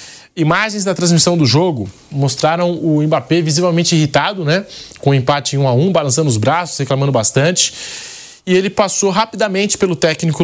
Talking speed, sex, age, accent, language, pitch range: 170 wpm, male, 20-39, Brazilian, Portuguese, 145-190 Hz